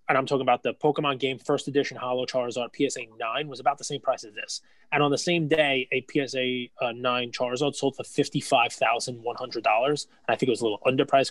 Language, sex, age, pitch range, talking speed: English, male, 20-39, 120-145 Hz, 220 wpm